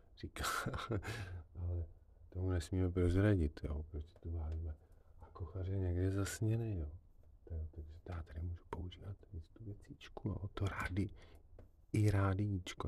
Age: 40-59